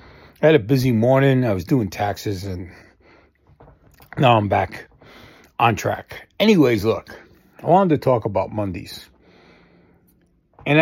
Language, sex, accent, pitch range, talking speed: English, male, American, 105-135 Hz, 135 wpm